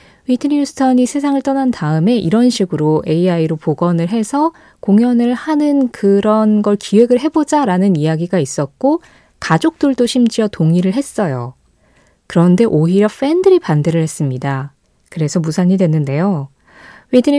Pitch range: 165-255 Hz